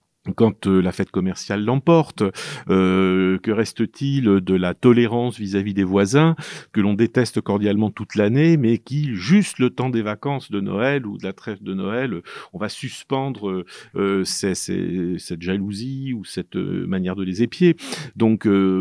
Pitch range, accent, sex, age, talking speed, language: 100-140 Hz, French, male, 40-59, 165 wpm, French